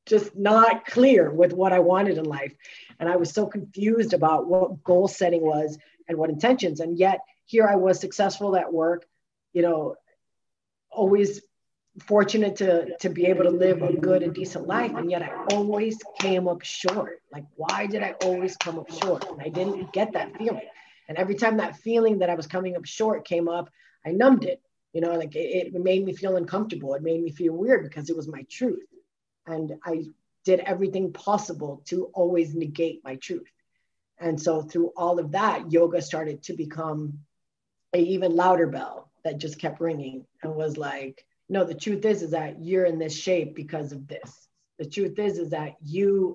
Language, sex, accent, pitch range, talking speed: English, female, American, 160-190 Hz, 195 wpm